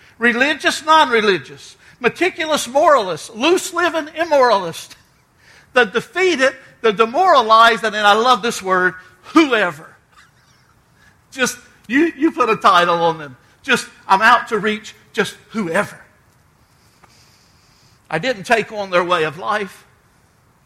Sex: male